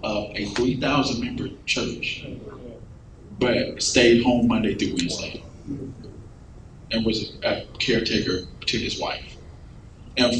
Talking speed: 115 wpm